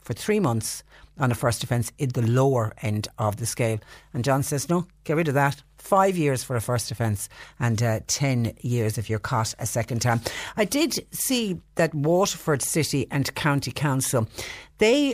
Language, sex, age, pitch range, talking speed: English, female, 60-79, 130-165 Hz, 190 wpm